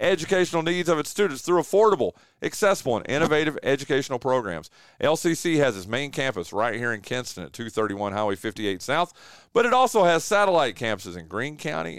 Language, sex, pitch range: English, male, 110-165 Hz